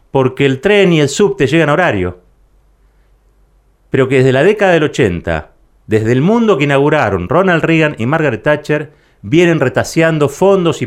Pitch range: 115-155 Hz